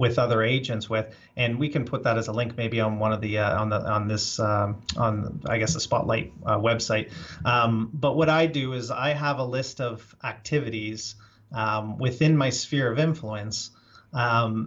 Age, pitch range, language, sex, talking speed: 30-49, 110-135 Hz, English, male, 200 wpm